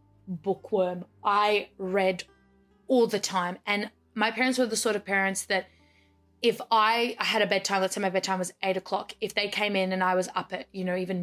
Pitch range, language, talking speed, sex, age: 190-245 Hz, English, 210 wpm, female, 20-39